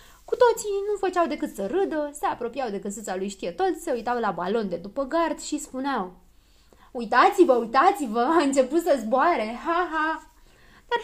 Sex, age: female, 20-39